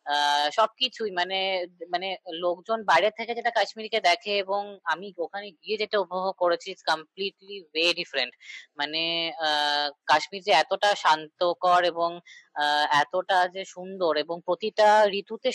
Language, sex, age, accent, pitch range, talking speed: Bengali, female, 20-39, native, 155-195 Hz, 95 wpm